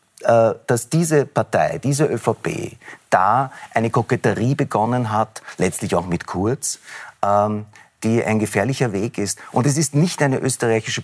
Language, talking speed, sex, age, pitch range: German, 135 wpm, male, 50-69, 110-135 Hz